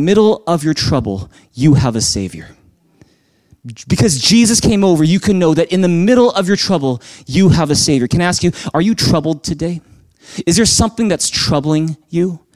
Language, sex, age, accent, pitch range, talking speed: English, male, 30-49, American, 150-190 Hz, 190 wpm